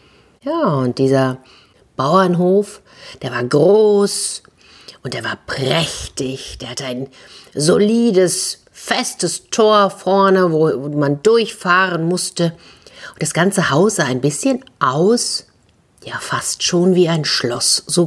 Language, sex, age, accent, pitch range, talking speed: German, female, 50-69, German, 145-205 Hz, 125 wpm